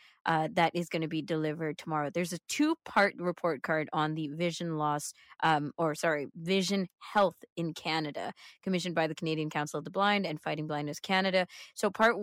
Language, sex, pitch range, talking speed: English, female, 160-195 Hz, 180 wpm